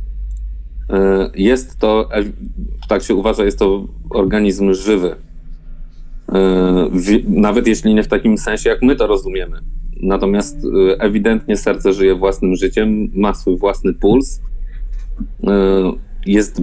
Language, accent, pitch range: Polish, native, 95-115 Hz